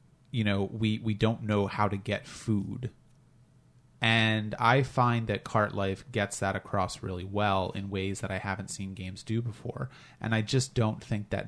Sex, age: male, 30-49